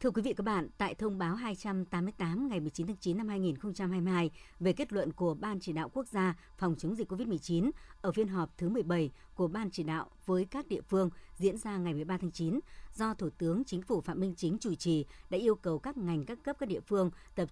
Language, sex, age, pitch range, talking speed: Vietnamese, male, 60-79, 165-215 Hz, 235 wpm